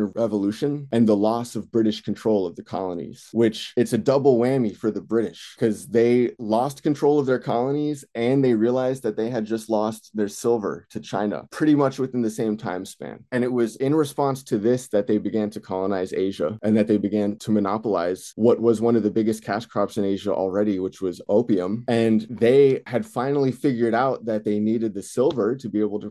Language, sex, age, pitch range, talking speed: English, male, 20-39, 105-125 Hz, 210 wpm